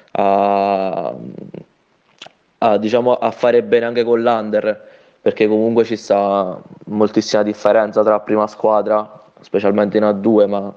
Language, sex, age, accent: Italian, male, 20-39, native